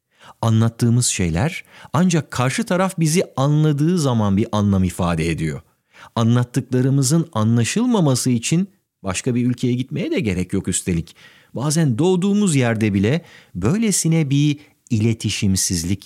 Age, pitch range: 50-69, 95-145 Hz